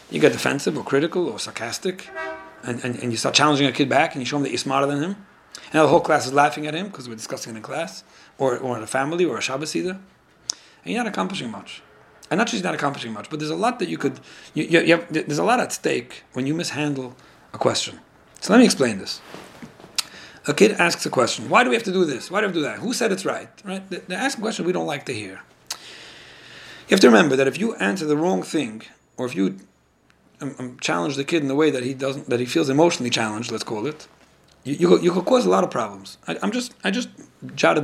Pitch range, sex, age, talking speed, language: 125-165 Hz, male, 40-59, 260 wpm, English